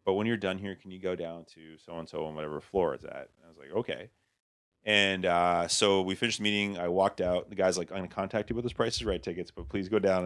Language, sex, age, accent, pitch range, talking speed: English, male, 30-49, American, 85-105 Hz, 285 wpm